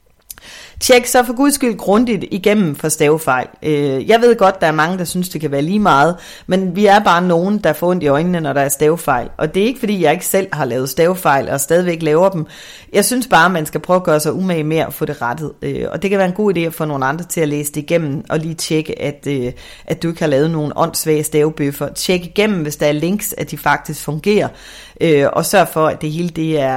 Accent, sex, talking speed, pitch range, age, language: native, female, 240 wpm, 155-195 Hz, 30-49, Danish